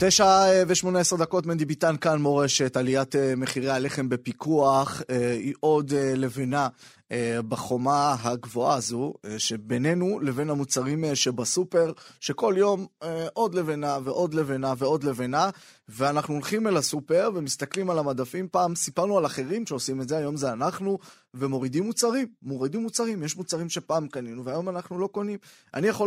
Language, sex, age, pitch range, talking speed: Hebrew, male, 20-39, 130-185 Hz, 140 wpm